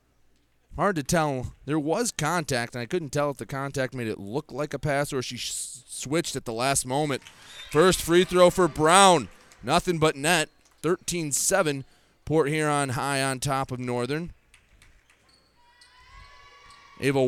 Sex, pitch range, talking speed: male, 130-170 Hz, 150 wpm